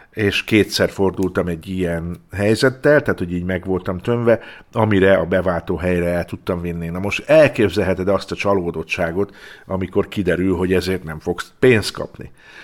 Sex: male